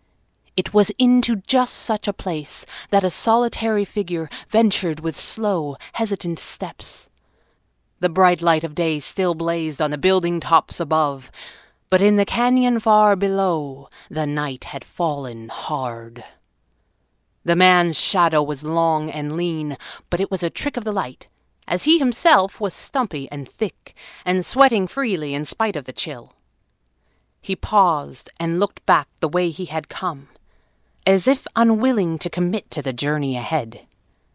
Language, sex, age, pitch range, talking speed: English, female, 30-49, 150-205 Hz, 155 wpm